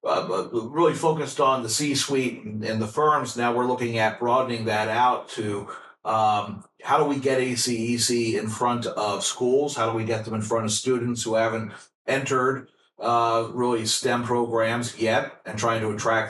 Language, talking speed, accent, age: English, 185 wpm, American, 40-59